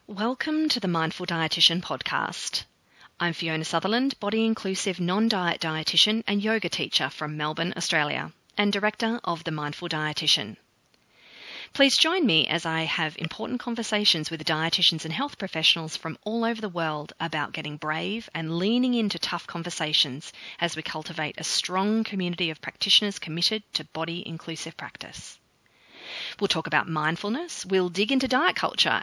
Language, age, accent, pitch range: English, 30-49, Australian, 160-210 Hz